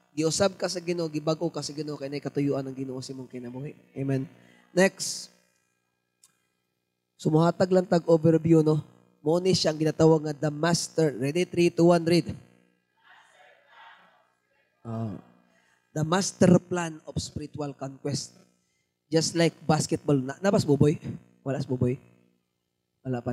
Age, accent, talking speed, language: 20-39, native, 125 wpm, Filipino